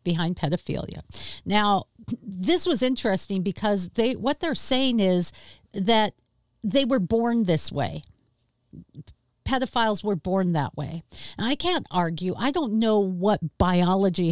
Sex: female